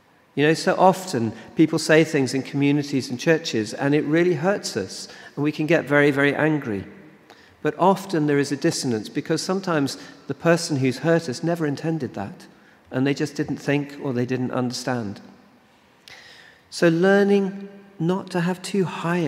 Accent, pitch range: British, 115-155 Hz